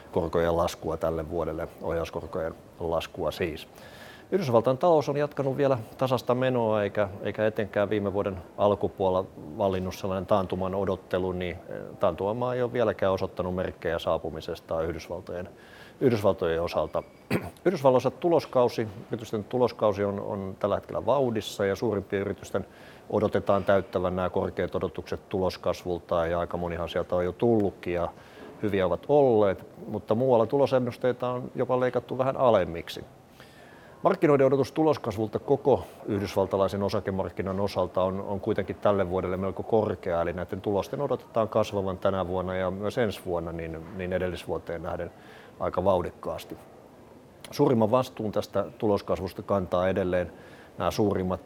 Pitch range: 90-120 Hz